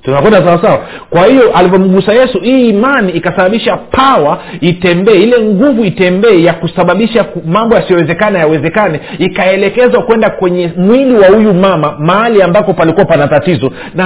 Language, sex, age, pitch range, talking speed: Swahili, male, 50-69, 165-215 Hz, 130 wpm